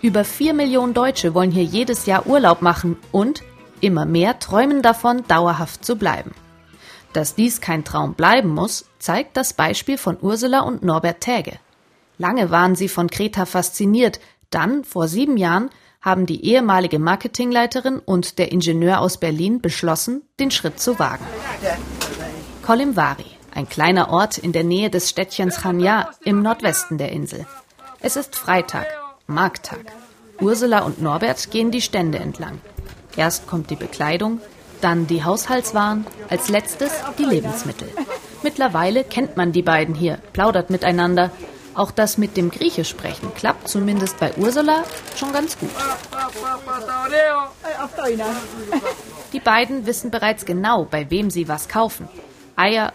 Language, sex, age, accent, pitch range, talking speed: German, female, 30-49, German, 175-245 Hz, 140 wpm